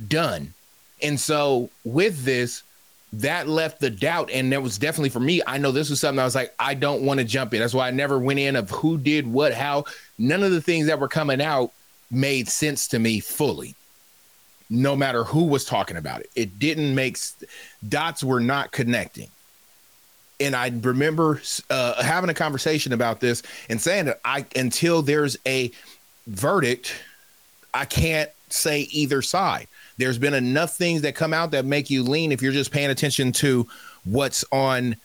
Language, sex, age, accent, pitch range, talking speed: English, male, 30-49, American, 120-150 Hz, 185 wpm